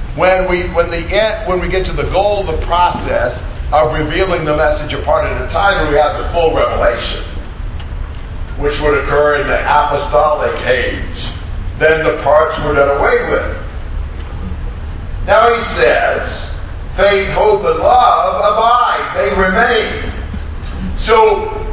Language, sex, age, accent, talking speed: English, male, 50-69, American, 145 wpm